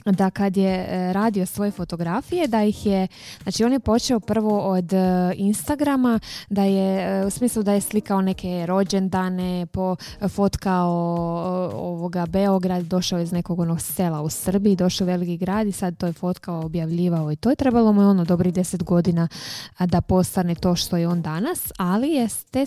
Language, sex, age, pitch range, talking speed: Croatian, female, 20-39, 175-200 Hz, 170 wpm